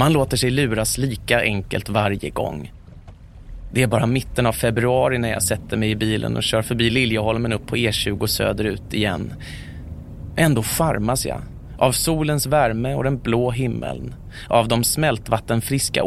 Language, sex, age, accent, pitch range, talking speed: Swedish, male, 30-49, native, 105-130 Hz, 155 wpm